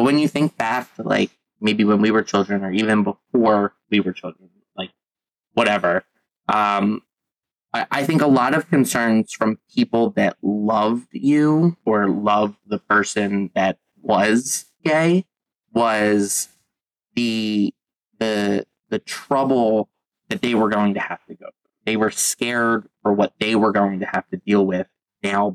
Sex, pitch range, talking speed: male, 105-125 Hz, 155 wpm